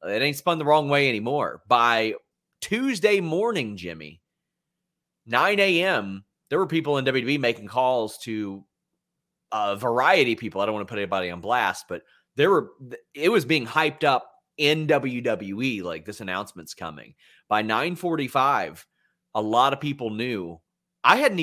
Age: 30-49